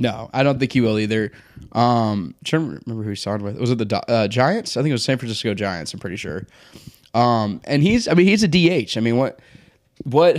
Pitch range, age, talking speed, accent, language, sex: 110-130 Hz, 20-39, 230 wpm, American, English, male